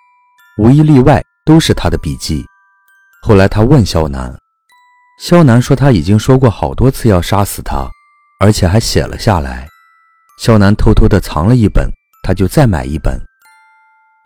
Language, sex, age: Chinese, male, 30-49